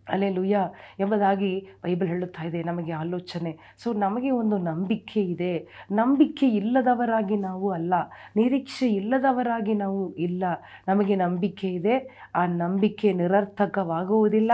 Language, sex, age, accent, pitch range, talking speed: Kannada, female, 40-59, native, 180-220 Hz, 105 wpm